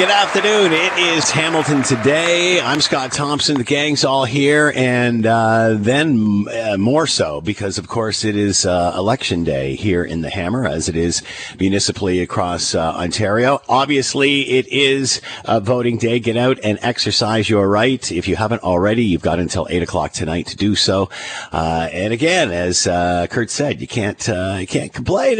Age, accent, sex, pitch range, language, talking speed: 50-69, American, male, 95-130 Hz, English, 180 wpm